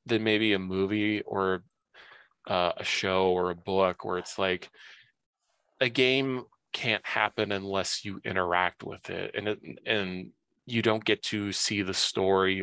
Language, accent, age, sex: English, American, 20-39, male